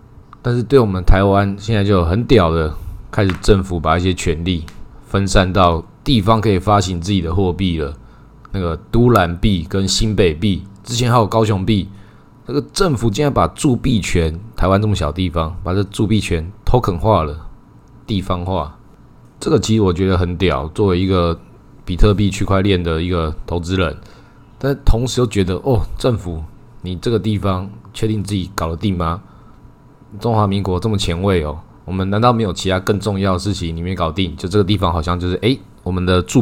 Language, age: Chinese, 20-39